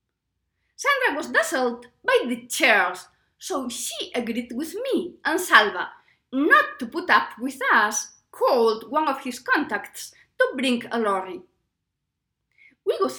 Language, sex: English, female